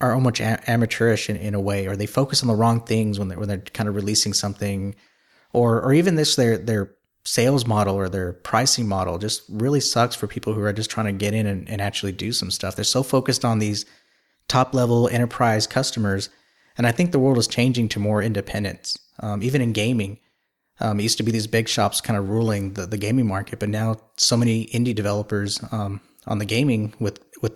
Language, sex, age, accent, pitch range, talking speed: English, male, 30-49, American, 105-120 Hz, 220 wpm